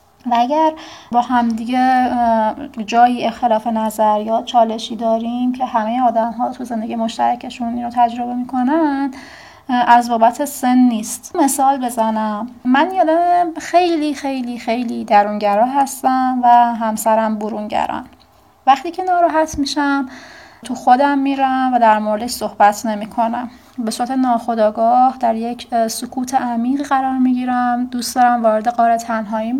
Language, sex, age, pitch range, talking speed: Persian, female, 30-49, 230-270 Hz, 125 wpm